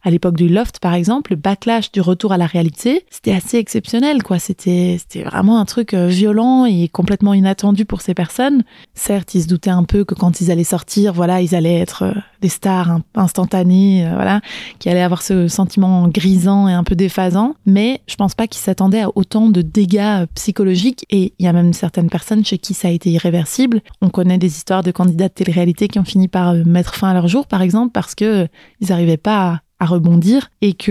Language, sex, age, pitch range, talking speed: French, female, 20-39, 180-210 Hz, 215 wpm